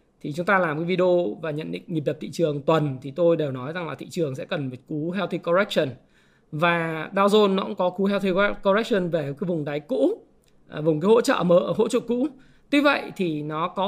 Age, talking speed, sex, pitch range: 20-39, 240 wpm, male, 170-230 Hz